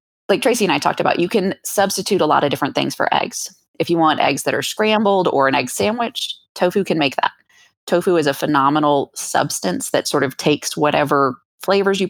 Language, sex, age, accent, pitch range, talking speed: English, female, 20-39, American, 155-195 Hz, 215 wpm